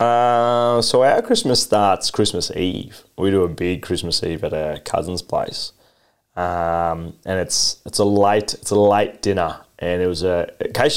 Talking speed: 175 wpm